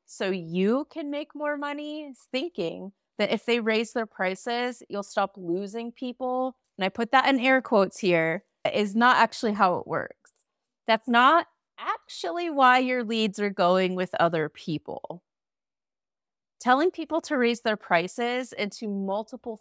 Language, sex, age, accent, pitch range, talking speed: English, female, 30-49, American, 195-260 Hz, 155 wpm